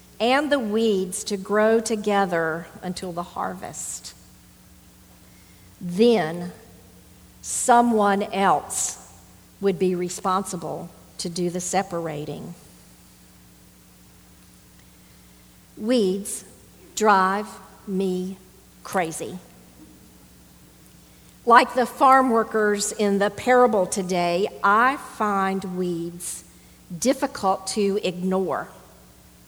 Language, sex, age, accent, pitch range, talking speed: English, female, 50-69, American, 160-215 Hz, 75 wpm